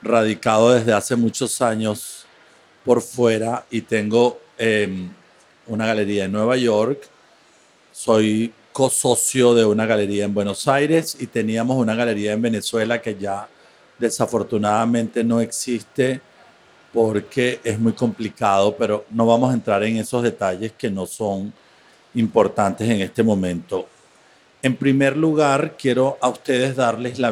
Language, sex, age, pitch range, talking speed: English, male, 50-69, 105-120 Hz, 135 wpm